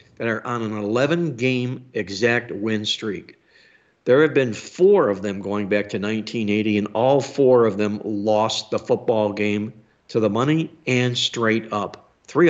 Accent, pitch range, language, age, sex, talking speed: American, 105-135 Hz, English, 60-79, male, 165 wpm